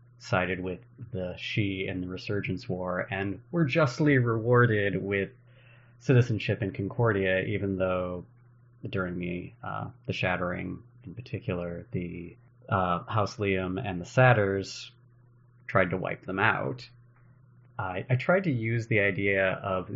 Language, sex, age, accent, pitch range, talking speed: English, male, 30-49, American, 95-125 Hz, 135 wpm